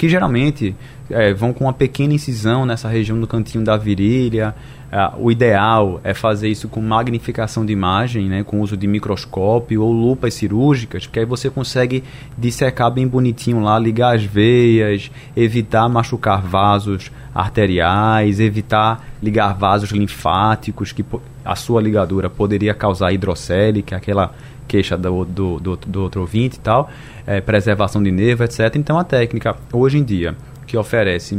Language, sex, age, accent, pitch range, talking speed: Portuguese, male, 20-39, Brazilian, 105-135 Hz, 145 wpm